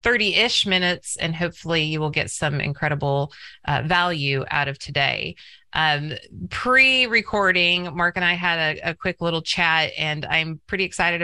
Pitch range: 145-175 Hz